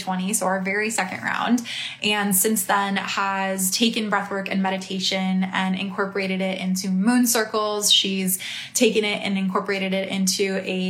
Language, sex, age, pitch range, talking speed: English, female, 20-39, 190-210 Hz, 155 wpm